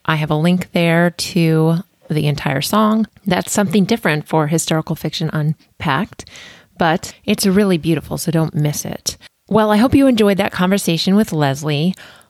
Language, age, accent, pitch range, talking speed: English, 30-49, American, 155-205 Hz, 160 wpm